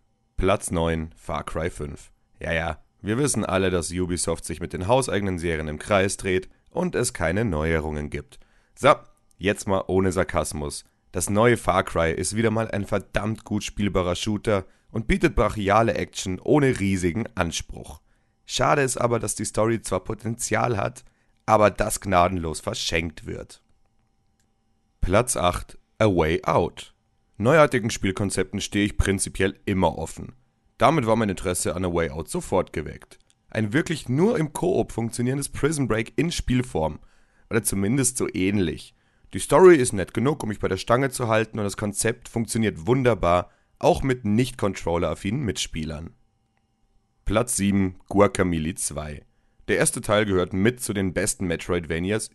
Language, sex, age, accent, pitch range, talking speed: German, male, 30-49, German, 90-115 Hz, 155 wpm